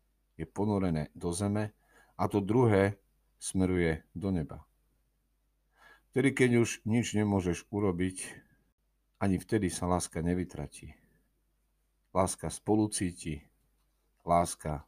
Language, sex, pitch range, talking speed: Slovak, male, 80-105 Hz, 95 wpm